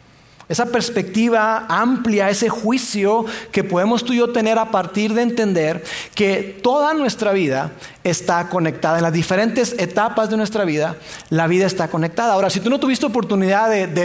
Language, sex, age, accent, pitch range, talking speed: Spanish, male, 40-59, Mexican, 180-230 Hz, 170 wpm